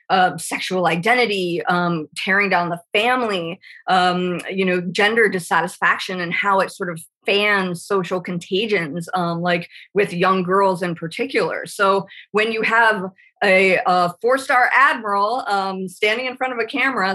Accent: American